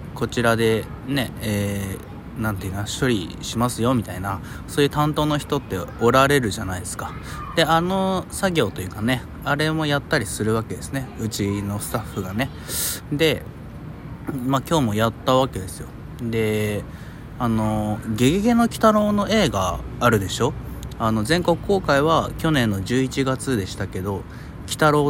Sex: male